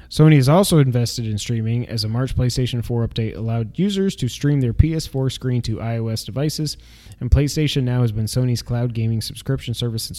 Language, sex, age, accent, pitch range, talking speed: English, male, 20-39, American, 115-145 Hz, 195 wpm